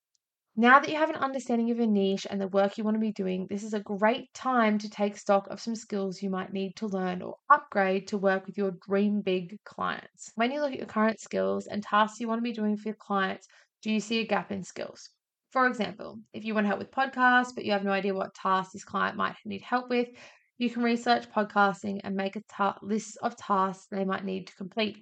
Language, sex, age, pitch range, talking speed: English, female, 20-39, 195-235 Hz, 245 wpm